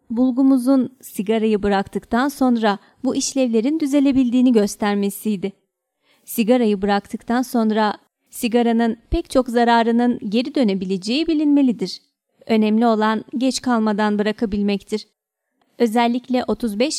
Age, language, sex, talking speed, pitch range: 30-49, Turkish, female, 90 wpm, 215-260 Hz